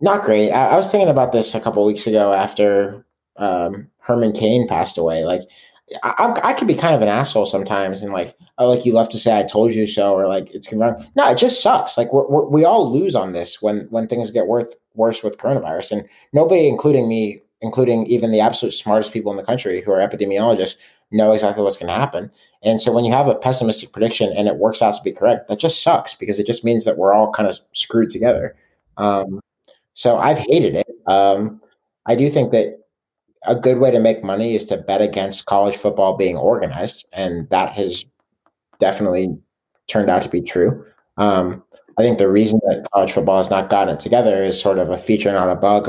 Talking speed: 225 wpm